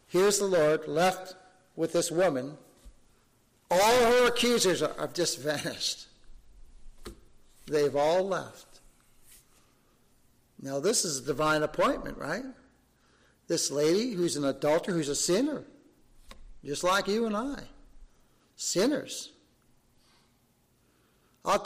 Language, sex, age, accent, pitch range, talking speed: English, male, 50-69, American, 145-200 Hz, 105 wpm